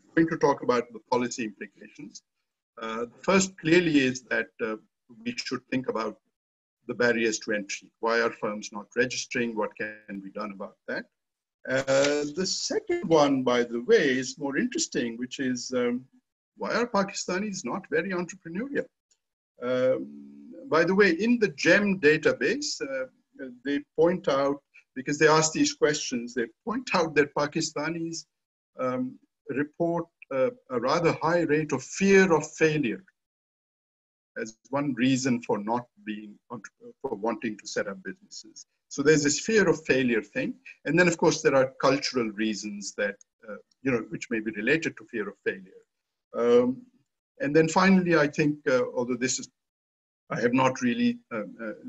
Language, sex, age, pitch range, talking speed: English, male, 50-69, 125-195 Hz, 160 wpm